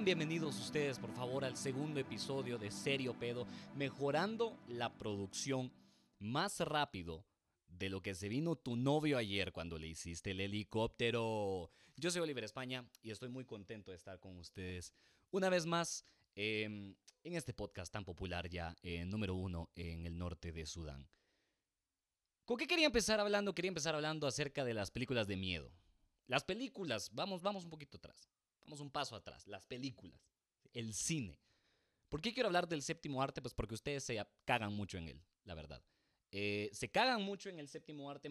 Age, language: 30-49, Spanish